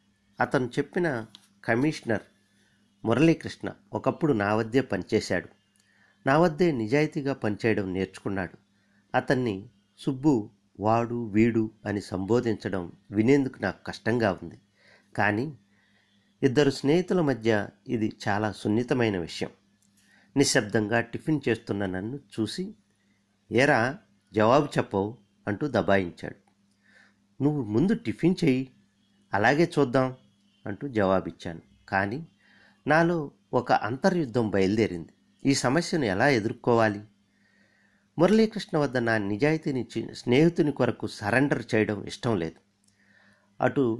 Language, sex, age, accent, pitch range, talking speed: Telugu, male, 50-69, native, 100-140 Hz, 95 wpm